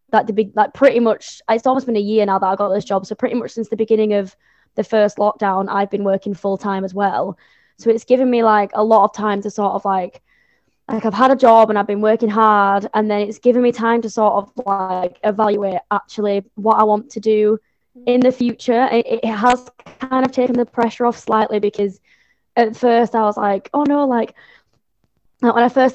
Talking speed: 225 wpm